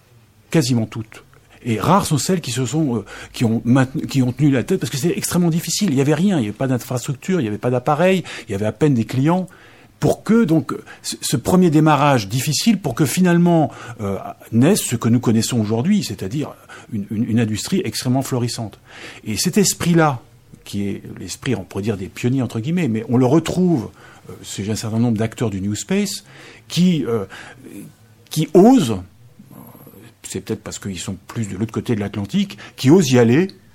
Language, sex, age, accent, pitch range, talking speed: French, male, 50-69, French, 115-160 Hz, 200 wpm